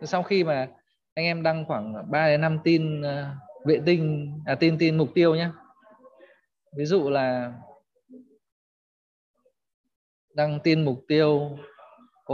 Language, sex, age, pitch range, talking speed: Vietnamese, male, 20-39, 150-190 Hz, 135 wpm